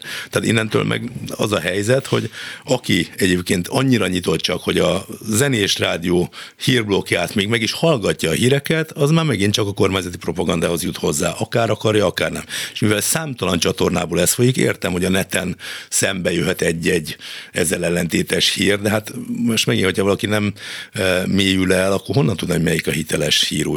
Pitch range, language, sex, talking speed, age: 85-105 Hz, Hungarian, male, 175 wpm, 60-79